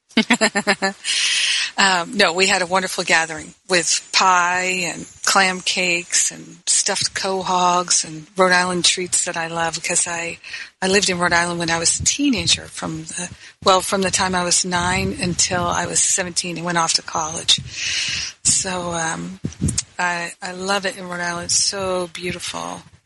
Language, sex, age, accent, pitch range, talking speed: English, female, 40-59, American, 175-195 Hz, 165 wpm